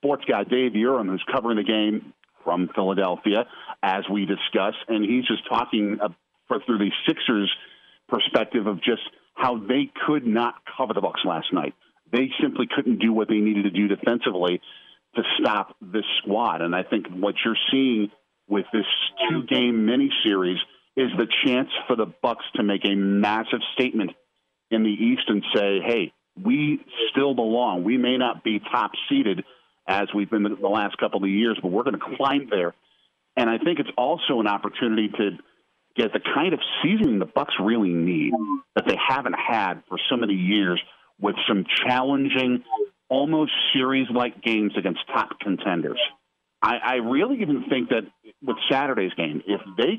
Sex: male